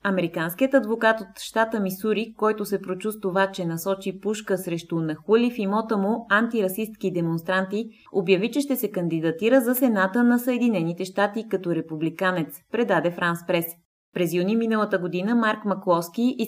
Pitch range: 175-220 Hz